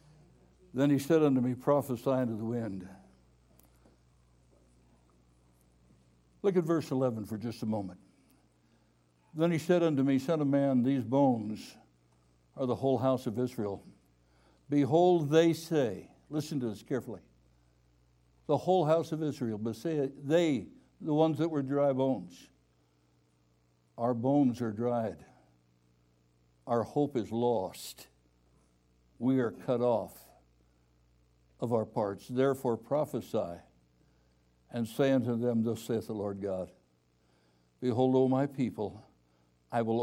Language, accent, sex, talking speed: English, American, male, 130 wpm